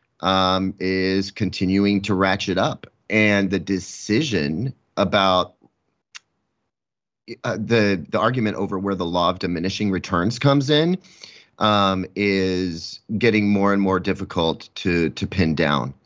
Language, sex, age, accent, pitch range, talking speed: English, male, 30-49, American, 90-110 Hz, 125 wpm